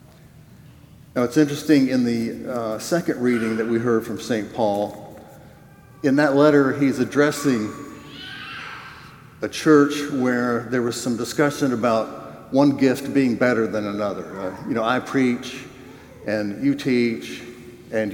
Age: 60-79